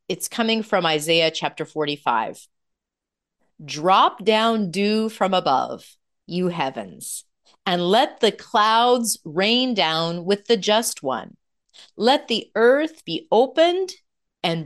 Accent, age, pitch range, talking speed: American, 40-59, 160-230 Hz, 120 wpm